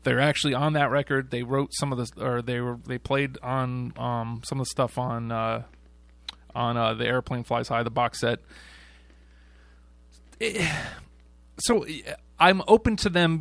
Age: 30-49